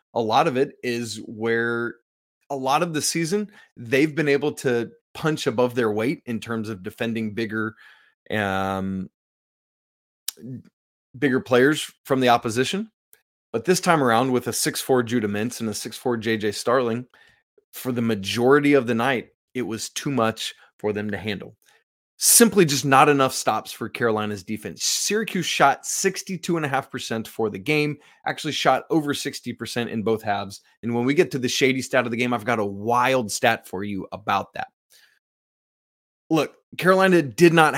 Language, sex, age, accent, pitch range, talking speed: English, male, 30-49, American, 110-140 Hz, 165 wpm